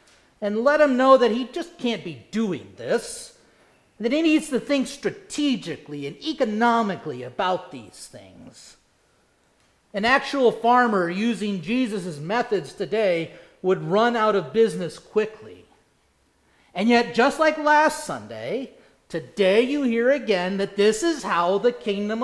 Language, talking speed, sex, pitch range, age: English, 140 wpm, male, 190-265 Hz, 40-59